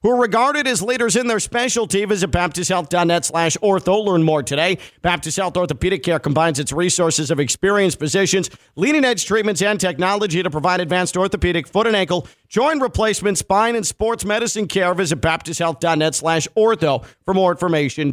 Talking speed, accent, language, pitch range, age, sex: 170 wpm, American, English, 145-195 Hz, 50-69, male